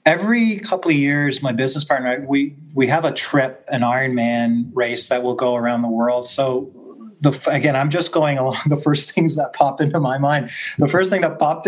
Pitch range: 125-155 Hz